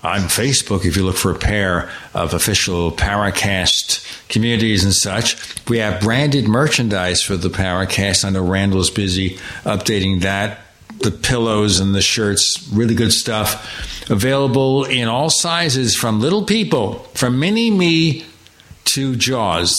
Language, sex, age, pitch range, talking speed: English, male, 60-79, 95-125 Hz, 140 wpm